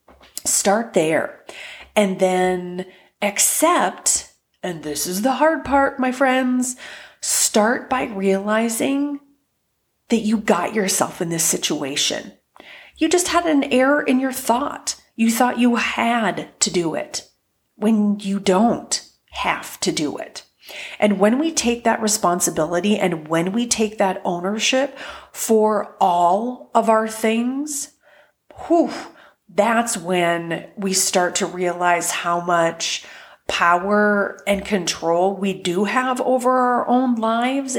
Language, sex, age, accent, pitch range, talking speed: English, female, 30-49, American, 190-255 Hz, 130 wpm